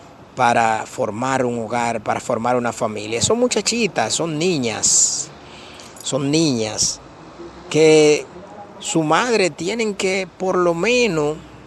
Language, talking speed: English, 115 wpm